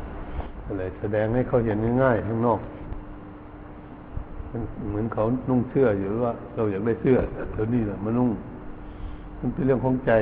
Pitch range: 100-125 Hz